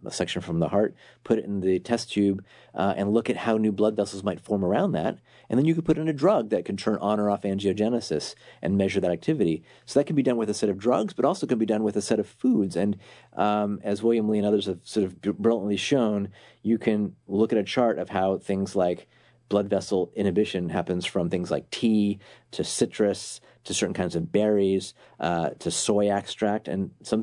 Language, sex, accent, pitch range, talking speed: English, male, American, 95-110 Hz, 230 wpm